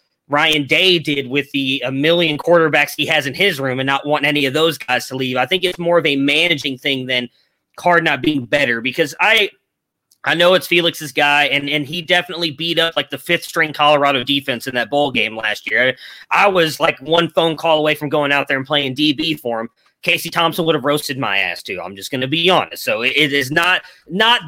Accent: American